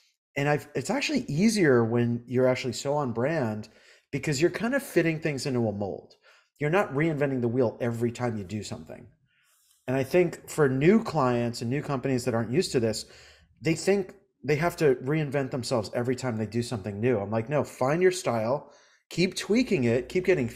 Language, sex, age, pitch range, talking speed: English, male, 30-49, 120-150 Hz, 195 wpm